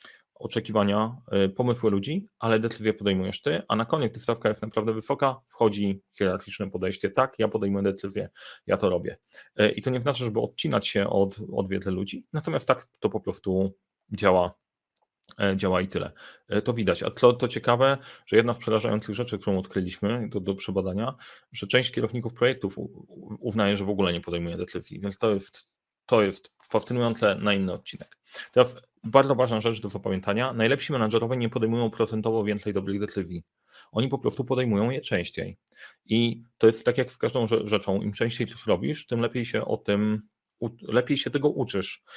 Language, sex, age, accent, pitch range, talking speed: Polish, male, 30-49, native, 100-125 Hz, 170 wpm